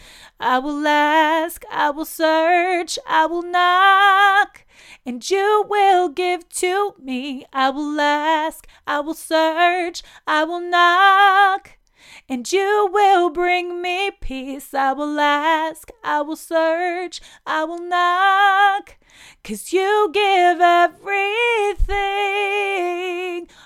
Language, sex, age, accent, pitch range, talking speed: English, female, 30-49, American, 275-385 Hz, 110 wpm